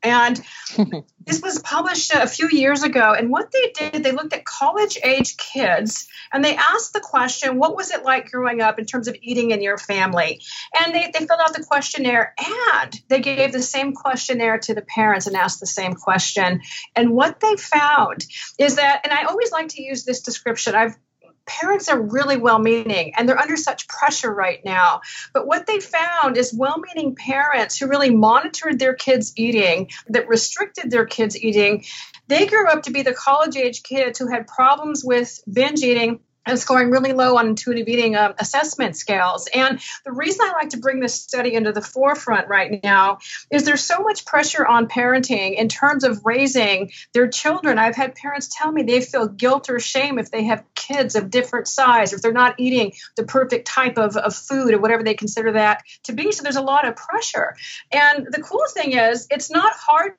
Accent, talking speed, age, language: American, 200 wpm, 40-59, English